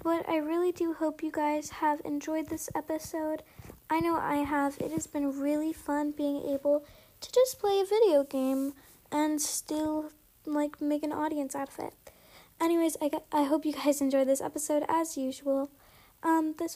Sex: female